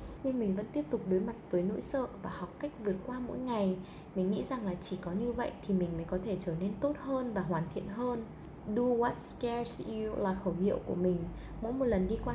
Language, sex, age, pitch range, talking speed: Vietnamese, female, 10-29, 180-225 Hz, 255 wpm